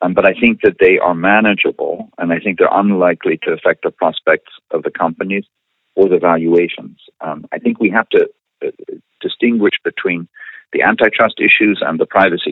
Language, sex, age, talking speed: English, male, 50-69, 180 wpm